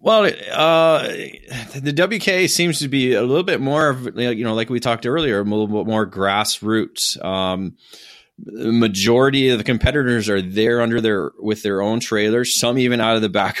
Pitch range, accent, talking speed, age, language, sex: 95-115 Hz, American, 190 wpm, 20-39, English, male